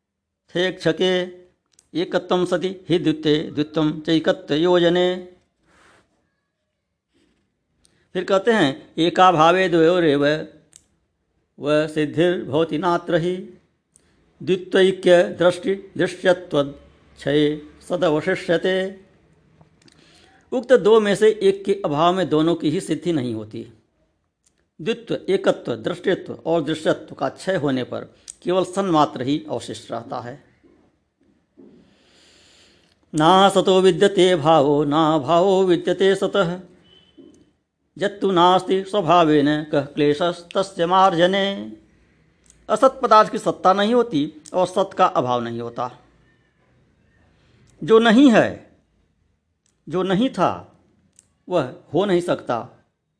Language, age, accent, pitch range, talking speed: Hindi, 60-79, native, 145-185 Hz, 95 wpm